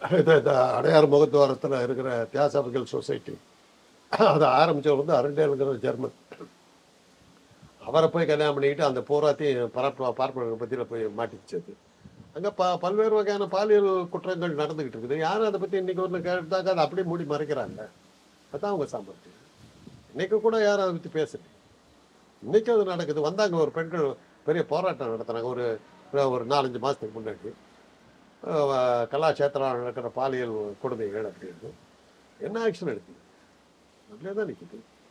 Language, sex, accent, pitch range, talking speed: Tamil, male, native, 135-195 Hz, 125 wpm